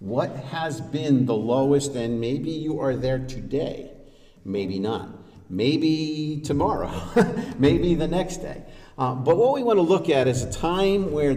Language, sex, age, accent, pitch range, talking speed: English, male, 50-69, American, 105-155 Hz, 165 wpm